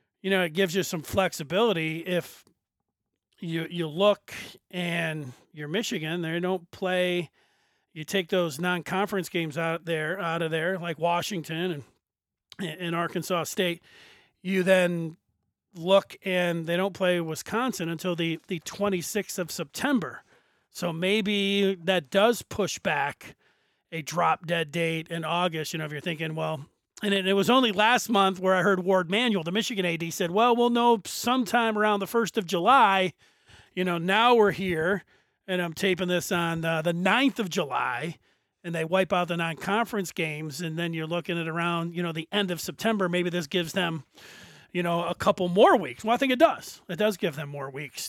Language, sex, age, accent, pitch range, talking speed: English, male, 40-59, American, 165-195 Hz, 180 wpm